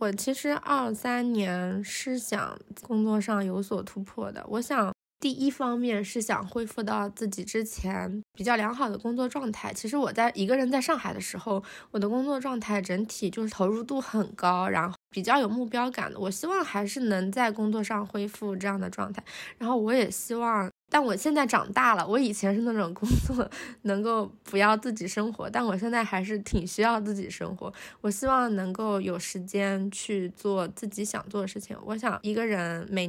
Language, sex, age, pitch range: Chinese, female, 20-39, 195-230 Hz